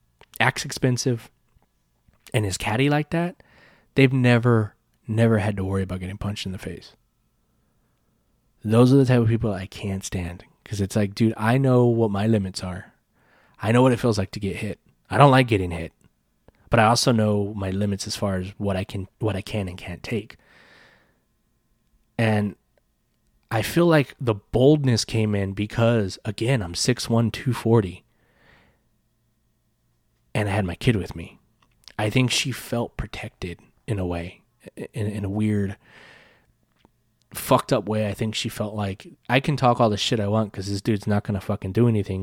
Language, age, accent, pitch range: English, 20-39, American, 100-120 Hz